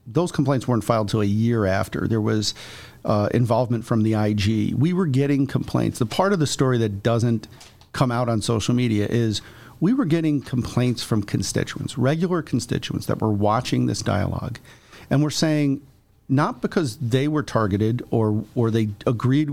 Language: English